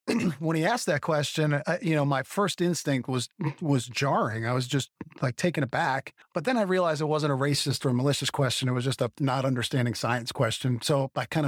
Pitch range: 130-150 Hz